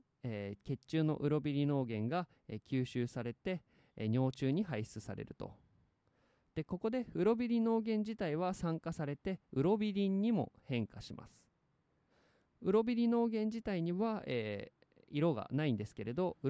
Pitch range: 115-185 Hz